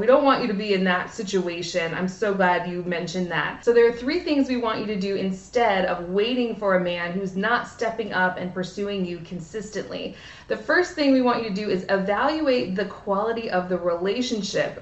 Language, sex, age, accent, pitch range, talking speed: English, female, 20-39, American, 185-230 Hz, 220 wpm